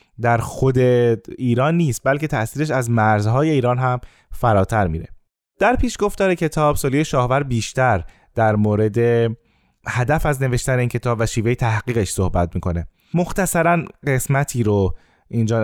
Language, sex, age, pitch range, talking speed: Persian, male, 20-39, 110-150 Hz, 130 wpm